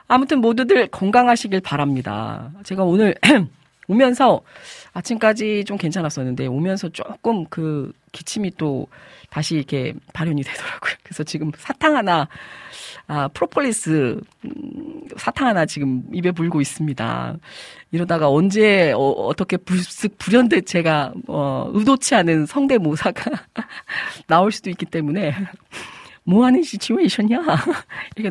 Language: Korean